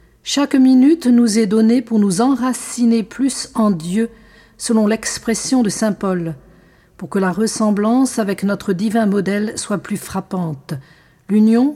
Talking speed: 145 wpm